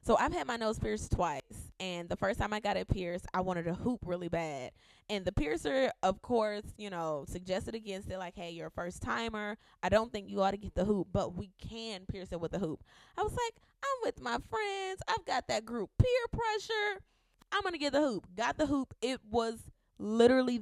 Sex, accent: female, American